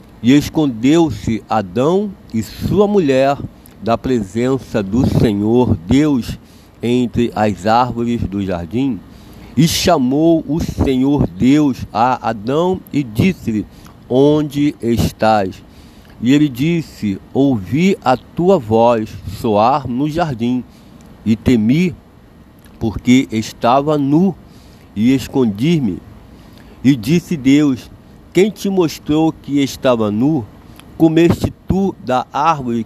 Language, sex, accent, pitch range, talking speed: Portuguese, male, Brazilian, 110-155 Hz, 105 wpm